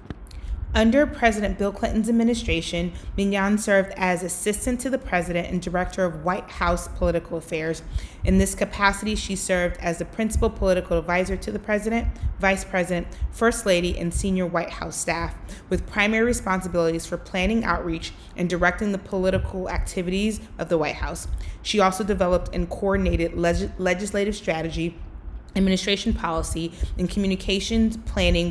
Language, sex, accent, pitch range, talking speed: English, female, American, 170-200 Hz, 145 wpm